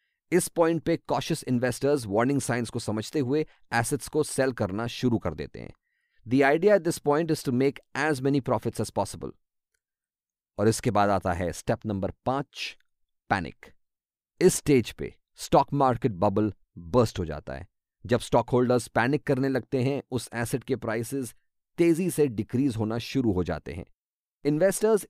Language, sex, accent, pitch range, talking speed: English, male, Indian, 115-155 Hz, 165 wpm